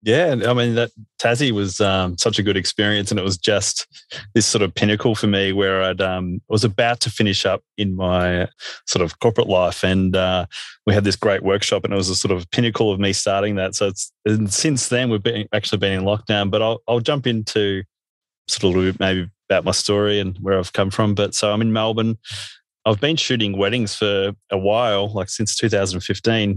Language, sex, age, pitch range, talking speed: English, male, 20-39, 95-110 Hz, 215 wpm